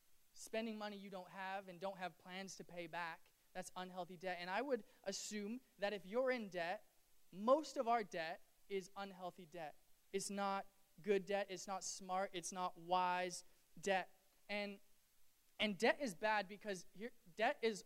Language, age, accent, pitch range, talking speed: English, 20-39, American, 195-240 Hz, 170 wpm